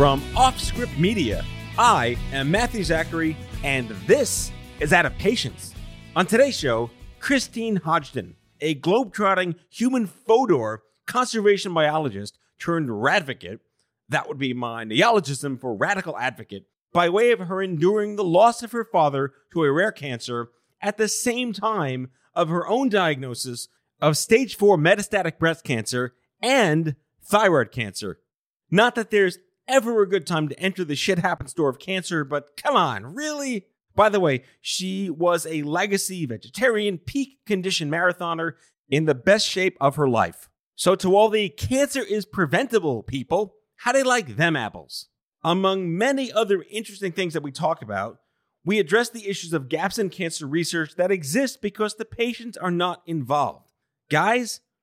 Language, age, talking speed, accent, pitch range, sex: English, 30-49, 155 wpm, American, 140-210 Hz, male